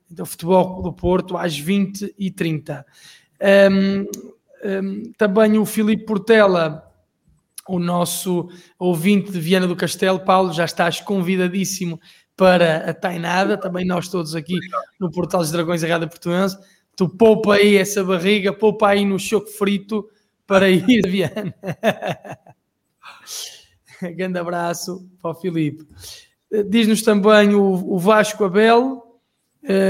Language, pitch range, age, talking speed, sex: Portuguese, 180-210 Hz, 20-39, 125 wpm, male